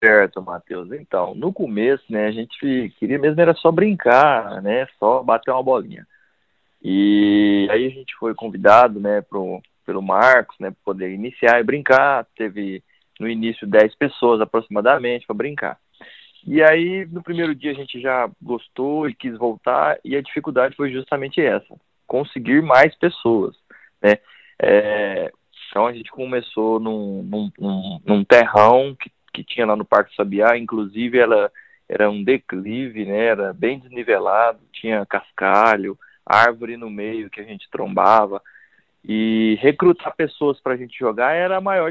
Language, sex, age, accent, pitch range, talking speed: Portuguese, male, 20-39, Brazilian, 110-150 Hz, 155 wpm